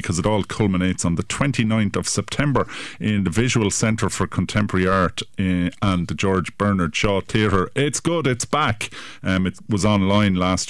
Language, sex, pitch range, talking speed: English, male, 90-110 Hz, 175 wpm